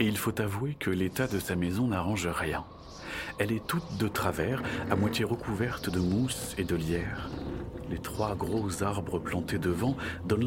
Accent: French